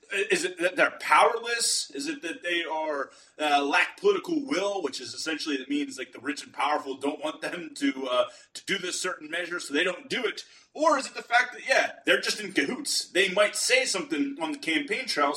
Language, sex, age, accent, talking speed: English, male, 30-49, American, 225 wpm